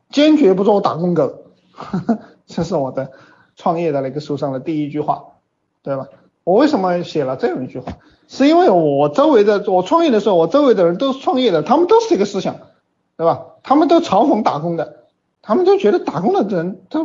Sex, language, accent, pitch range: male, Chinese, native, 150-230 Hz